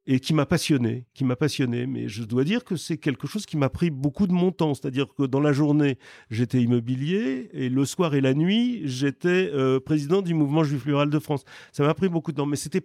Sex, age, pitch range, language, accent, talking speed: male, 40-59, 125-155 Hz, French, French, 245 wpm